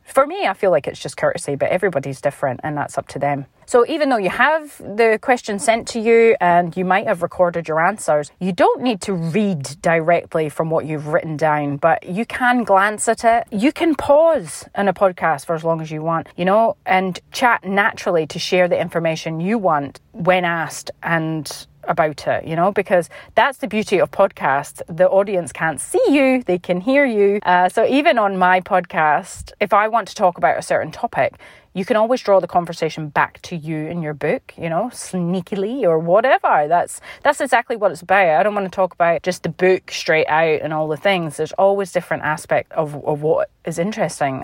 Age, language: 30-49, English